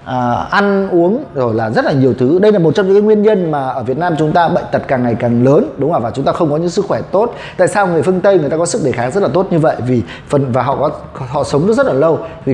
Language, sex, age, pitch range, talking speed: Vietnamese, male, 20-39, 135-185 Hz, 325 wpm